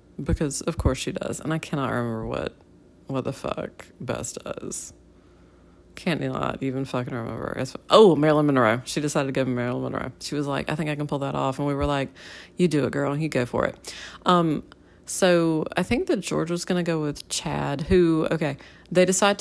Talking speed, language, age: 205 wpm, English, 40-59